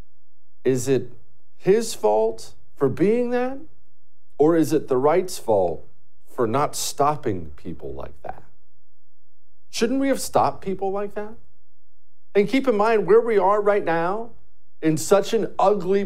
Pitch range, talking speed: 145-225 Hz, 145 wpm